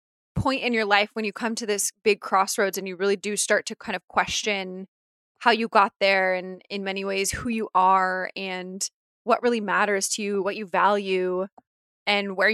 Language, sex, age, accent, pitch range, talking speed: English, female, 20-39, American, 190-230 Hz, 200 wpm